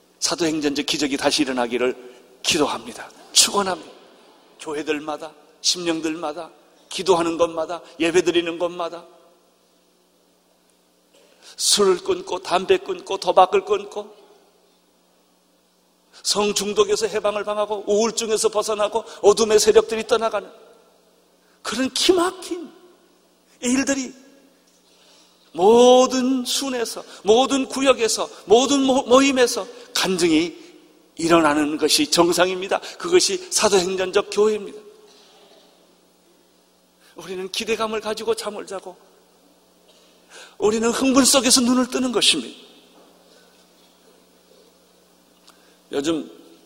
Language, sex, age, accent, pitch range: Korean, male, 40-59, native, 165-270 Hz